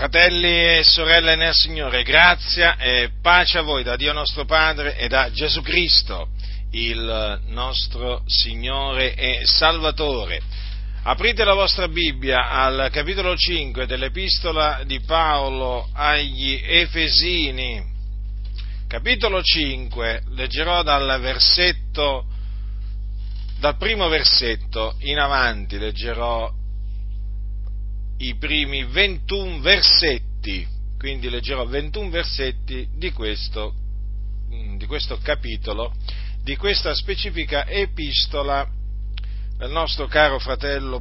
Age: 50-69